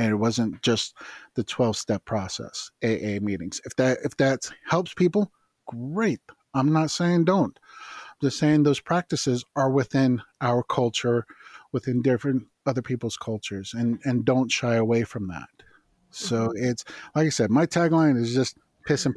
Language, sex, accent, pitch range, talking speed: English, male, American, 120-145 Hz, 160 wpm